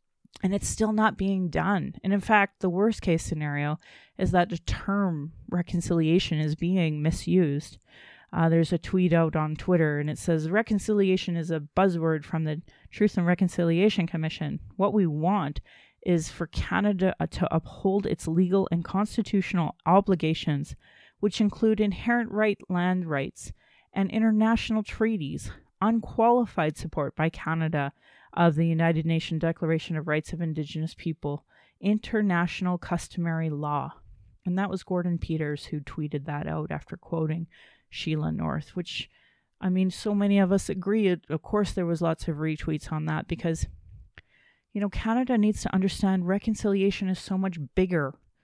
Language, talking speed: English, 150 wpm